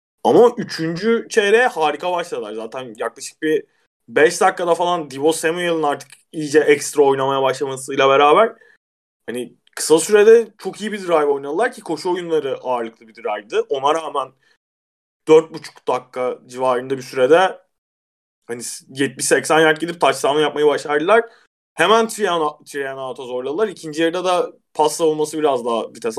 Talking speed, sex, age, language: 135 wpm, male, 20-39, Turkish